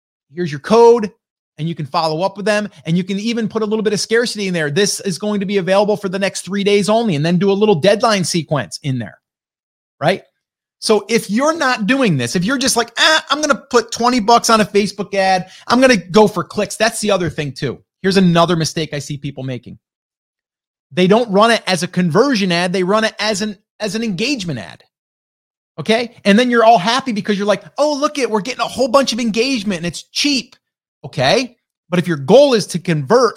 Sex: male